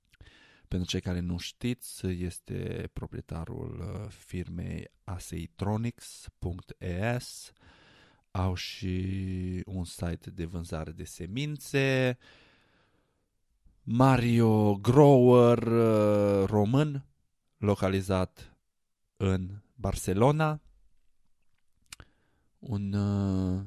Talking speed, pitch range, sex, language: 60 wpm, 85-110 Hz, male, Romanian